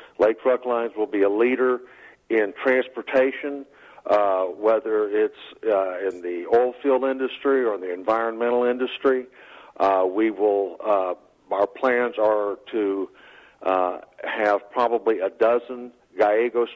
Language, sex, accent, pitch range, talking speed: English, male, American, 105-125 Hz, 130 wpm